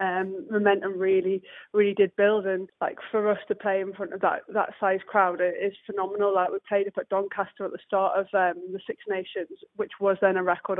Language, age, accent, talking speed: English, 20-39, British, 230 wpm